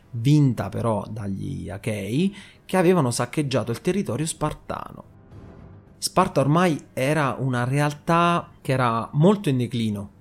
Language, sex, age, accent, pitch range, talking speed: Italian, male, 30-49, native, 110-160 Hz, 120 wpm